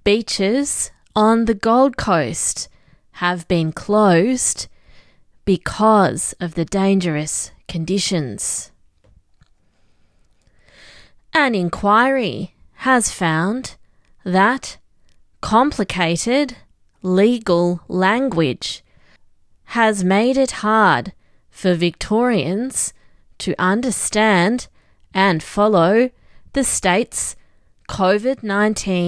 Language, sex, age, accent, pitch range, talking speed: English, female, 20-39, Australian, 175-225 Hz, 70 wpm